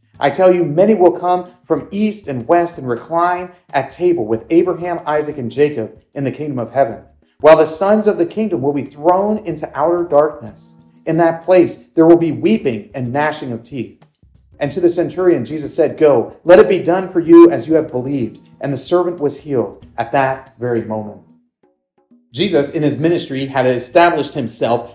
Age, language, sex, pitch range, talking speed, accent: 40-59, English, male, 135-185 Hz, 190 wpm, American